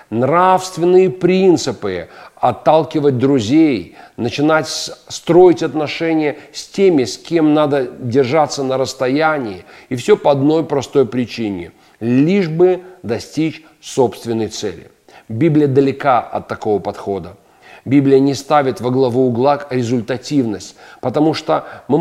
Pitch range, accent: 125-165 Hz, native